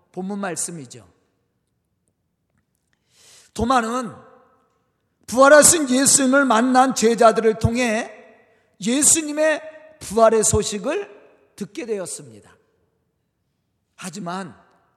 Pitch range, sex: 205-280 Hz, male